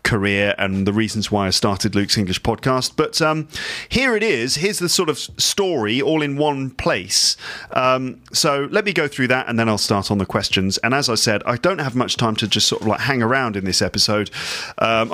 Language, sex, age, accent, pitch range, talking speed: English, male, 40-59, British, 110-155 Hz, 230 wpm